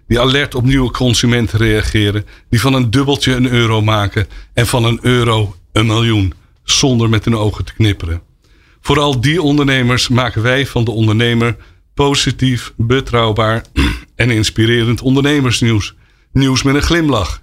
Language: Dutch